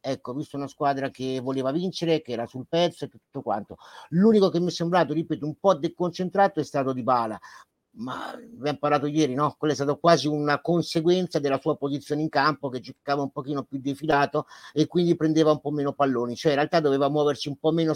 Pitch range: 135-170 Hz